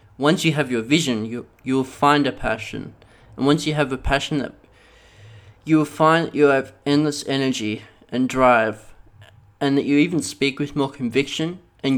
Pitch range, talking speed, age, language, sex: 120-145 Hz, 180 wpm, 20-39, English, male